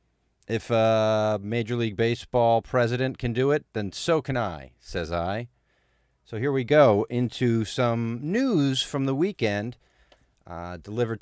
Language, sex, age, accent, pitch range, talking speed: English, male, 40-59, American, 95-135 Hz, 145 wpm